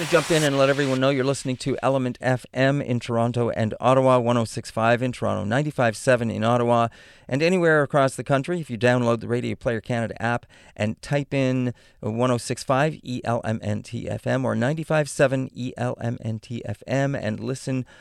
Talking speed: 145 wpm